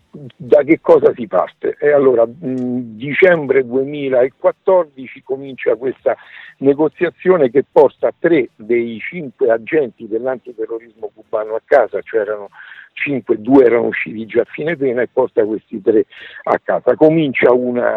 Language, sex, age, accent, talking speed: Italian, male, 60-79, native, 135 wpm